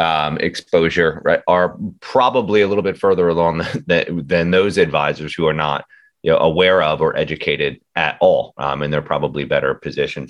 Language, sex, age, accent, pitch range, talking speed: English, male, 30-49, American, 80-120 Hz, 180 wpm